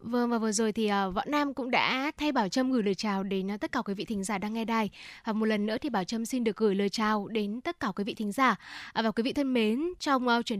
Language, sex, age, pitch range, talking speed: Vietnamese, female, 10-29, 215-260 Hz, 290 wpm